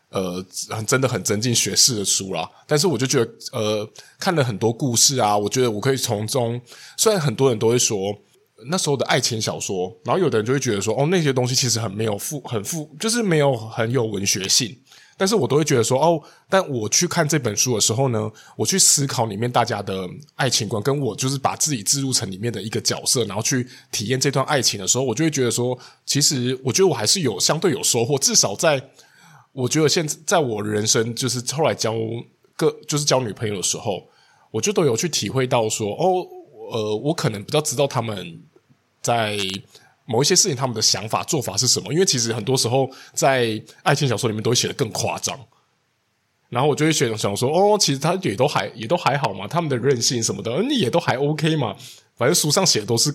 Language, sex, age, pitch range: Chinese, male, 20-39, 110-150 Hz